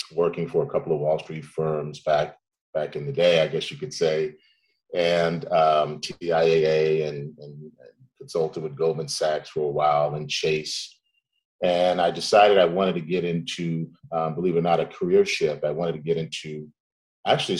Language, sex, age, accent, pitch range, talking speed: English, male, 40-59, American, 75-90 Hz, 185 wpm